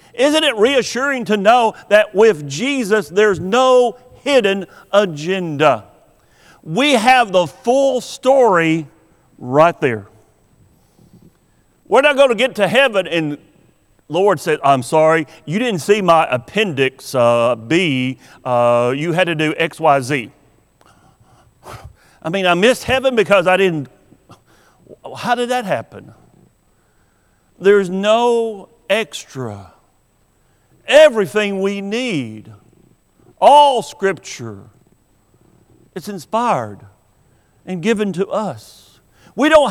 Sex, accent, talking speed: male, American, 110 wpm